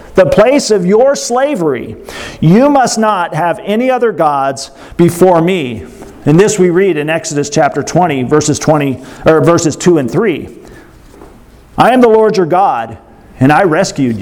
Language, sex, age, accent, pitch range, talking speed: English, male, 40-59, American, 160-220 Hz, 150 wpm